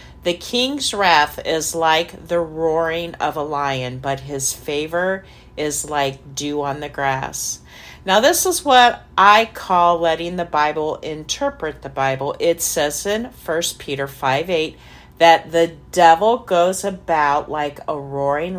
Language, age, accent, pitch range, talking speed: English, 40-59, American, 140-185 Hz, 145 wpm